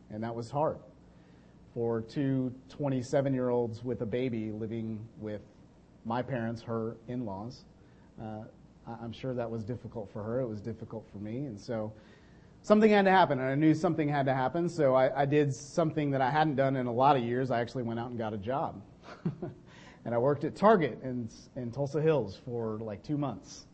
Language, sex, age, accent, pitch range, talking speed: English, male, 40-59, American, 115-150 Hz, 195 wpm